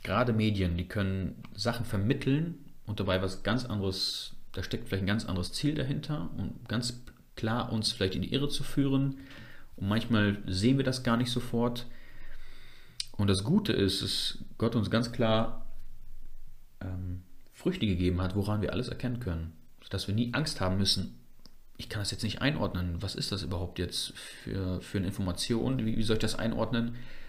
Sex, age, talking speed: male, 30-49, 180 wpm